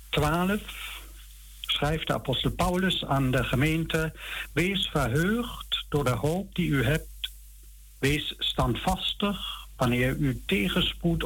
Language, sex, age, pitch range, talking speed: Dutch, male, 60-79, 120-170 Hz, 110 wpm